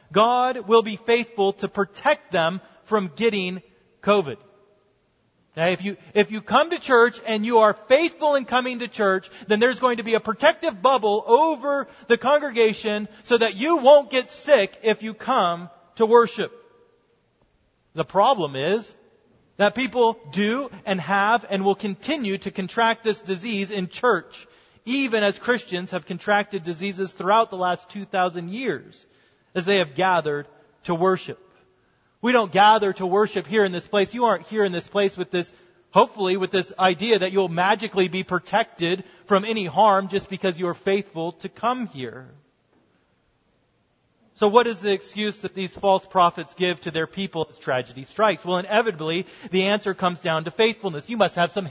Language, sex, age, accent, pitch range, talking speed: English, male, 40-59, American, 185-230 Hz, 170 wpm